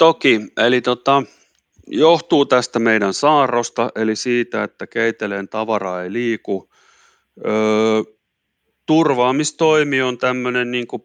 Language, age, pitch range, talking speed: Finnish, 30-49, 95-115 Hz, 85 wpm